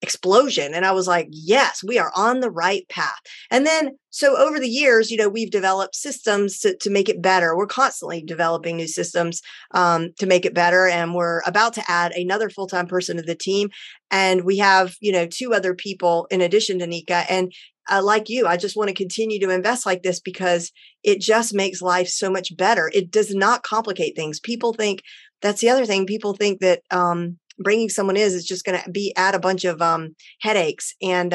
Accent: American